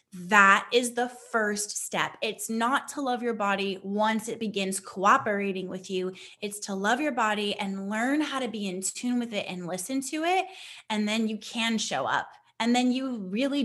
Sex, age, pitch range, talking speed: female, 10-29, 195-230 Hz, 200 wpm